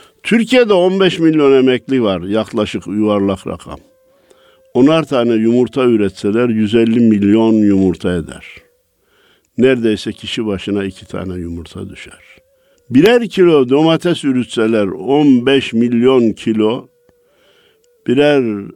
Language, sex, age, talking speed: Turkish, male, 60-79, 100 wpm